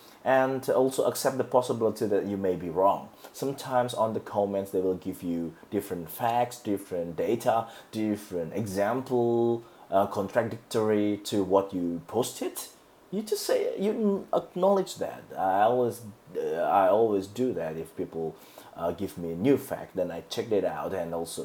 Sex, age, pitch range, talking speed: male, 30-49, 90-125 Hz, 160 wpm